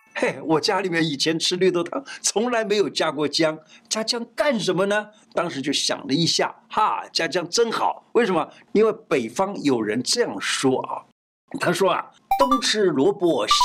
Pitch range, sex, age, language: 160-230 Hz, male, 50-69, Chinese